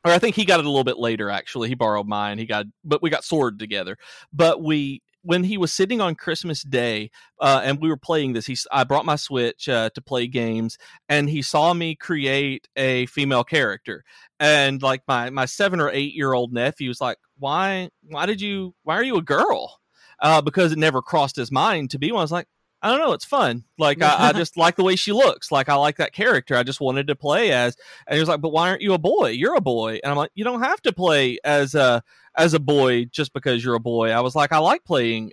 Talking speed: 255 wpm